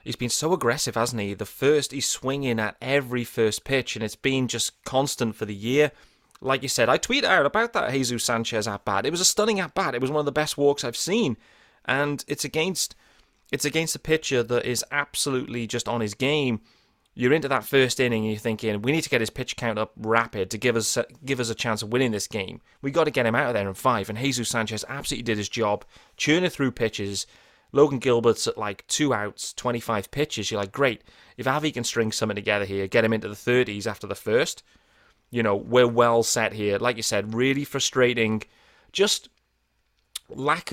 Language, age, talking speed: English, 30-49, 220 wpm